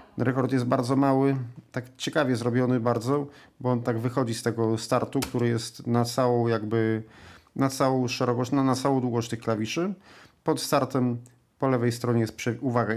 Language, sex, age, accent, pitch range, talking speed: Polish, male, 40-59, native, 115-135 Hz, 170 wpm